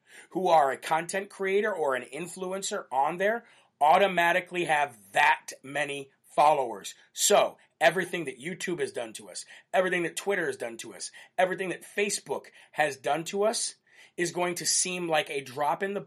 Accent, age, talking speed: American, 40-59, 170 wpm